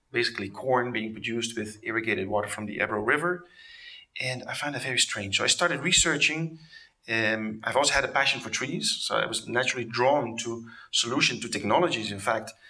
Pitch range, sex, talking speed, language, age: 105-135 Hz, male, 190 wpm, English, 30-49